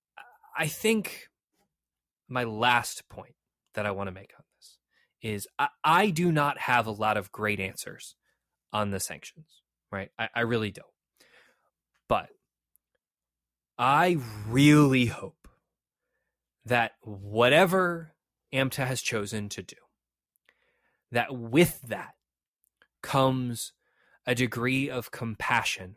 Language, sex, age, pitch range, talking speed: English, male, 20-39, 95-125 Hz, 115 wpm